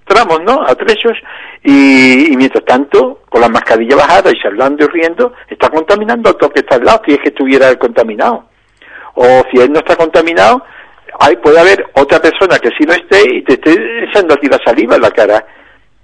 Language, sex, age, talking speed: Spanish, male, 60-79, 205 wpm